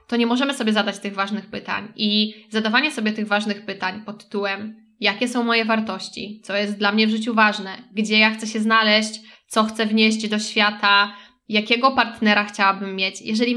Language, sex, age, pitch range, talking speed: Polish, female, 20-39, 210-250 Hz, 185 wpm